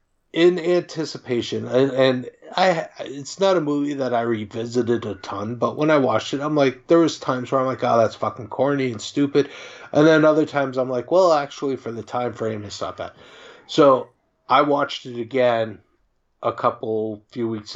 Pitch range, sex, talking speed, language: 110-135 Hz, male, 190 wpm, English